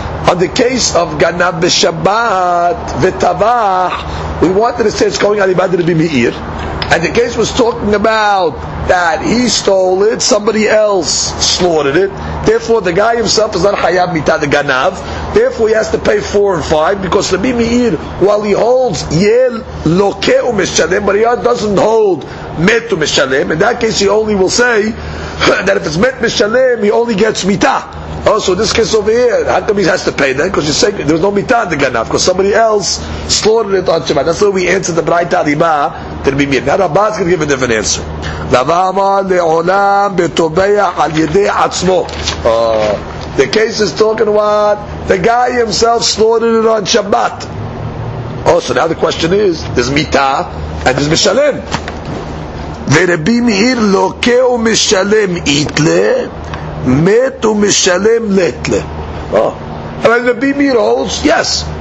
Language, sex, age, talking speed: English, male, 50-69, 155 wpm